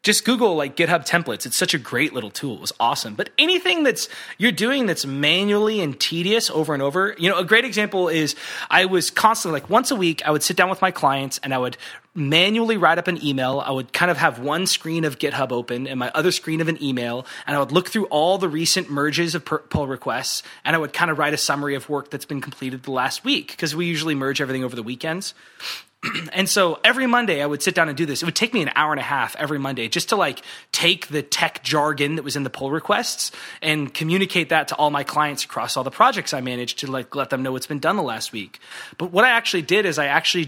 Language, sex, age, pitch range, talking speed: English, male, 20-39, 140-185 Hz, 260 wpm